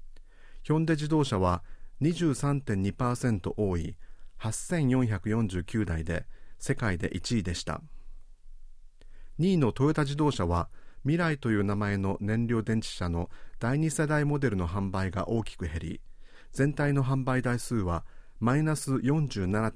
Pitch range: 95-135 Hz